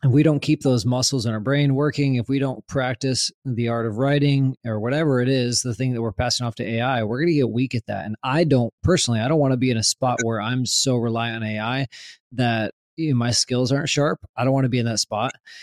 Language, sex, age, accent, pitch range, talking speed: English, male, 20-39, American, 115-135 Hz, 260 wpm